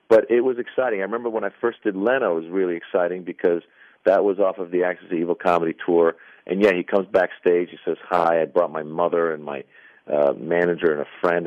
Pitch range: 85-125 Hz